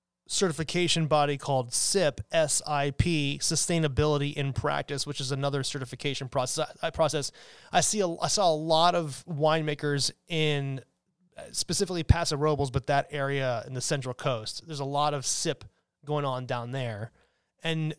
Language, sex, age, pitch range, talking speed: English, male, 30-49, 140-170 Hz, 150 wpm